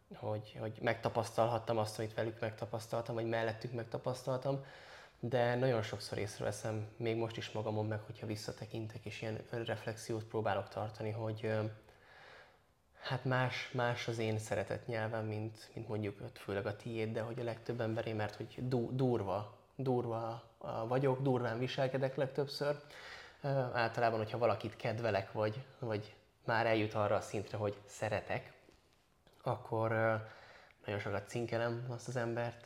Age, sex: 20-39, male